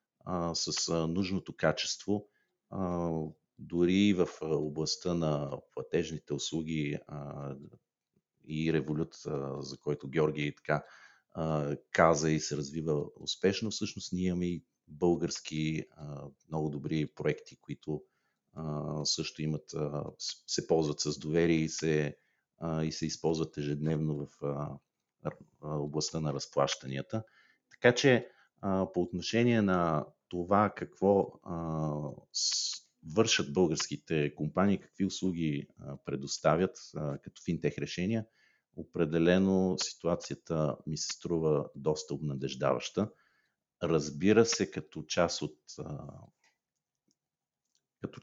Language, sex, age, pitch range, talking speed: Bulgarian, male, 50-69, 75-90 Hz, 90 wpm